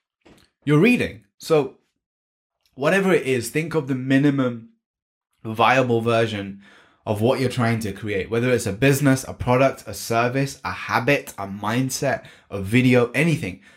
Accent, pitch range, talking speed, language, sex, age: British, 110-140 Hz, 145 wpm, English, male, 10-29